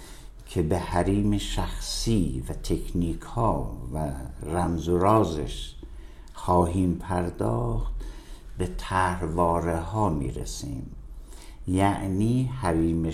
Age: 60-79